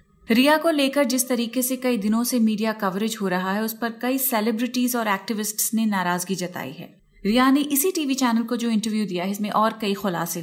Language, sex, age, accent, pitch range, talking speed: Hindi, female, 30-49, native, 195-235 Hz, 220 wpm